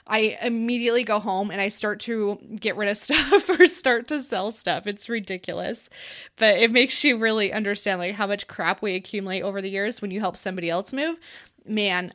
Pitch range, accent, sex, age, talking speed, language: 190-220 Hz, American, female, 20-39, 205 wpm, English